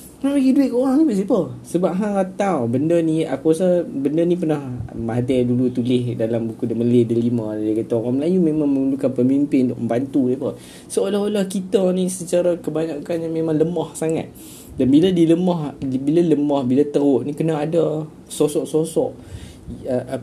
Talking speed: 170 wpm